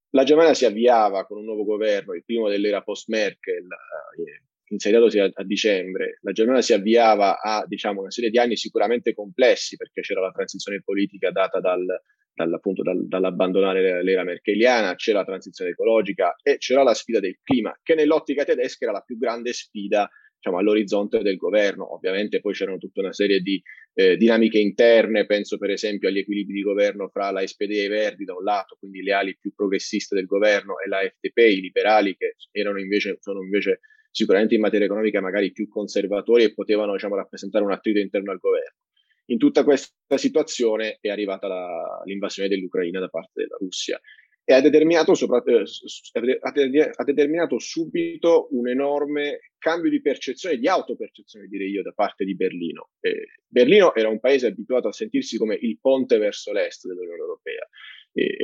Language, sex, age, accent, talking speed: Italian, male, 20-39, native, 165 wpm